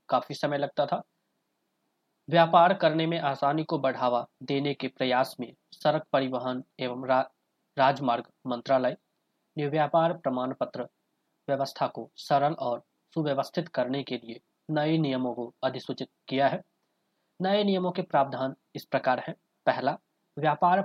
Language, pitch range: Hindi, 130-165 Hz